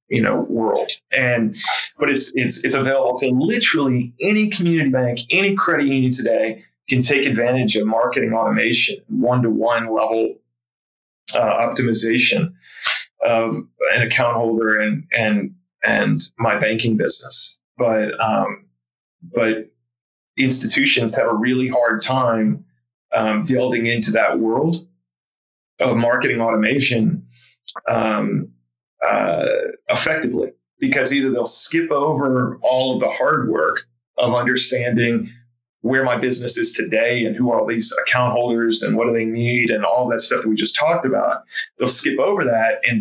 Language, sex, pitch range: English, male, 110-130 Hz